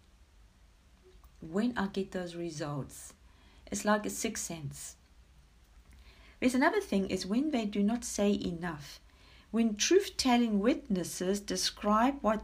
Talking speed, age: 120 wpm, 60-79